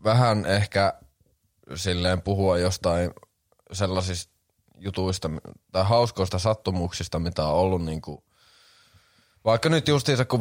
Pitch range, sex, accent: 85-105 Hz, male, native